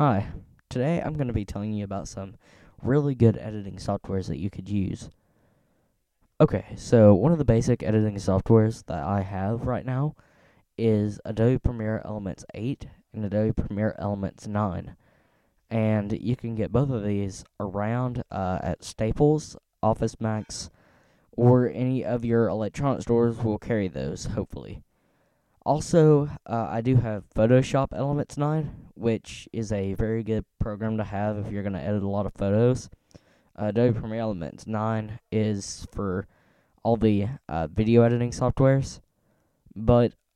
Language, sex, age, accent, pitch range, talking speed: English, male, 10-29, American, 100-120 Hz, 155 wpm